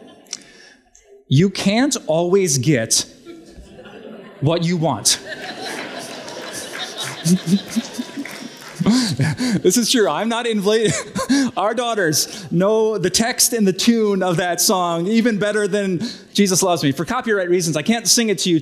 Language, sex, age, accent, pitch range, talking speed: English, male, 30-49, American, 165-230 Hz, 125 wpm